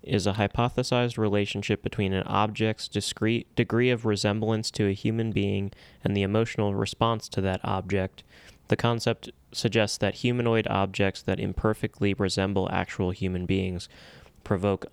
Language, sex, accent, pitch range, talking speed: English, male, American, 90-110 Hz, 140 wpm